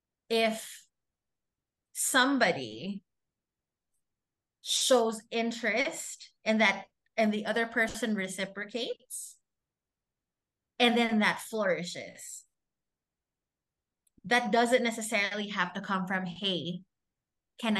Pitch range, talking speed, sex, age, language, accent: 180-230 Hz, 75 wpm, female, 20-39, Filipino, native